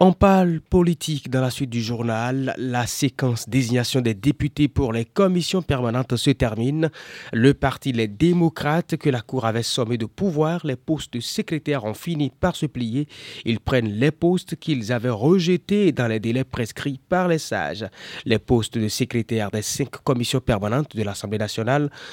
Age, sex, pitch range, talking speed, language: 30-49, male, 120-160 Hz, 175 wpm, French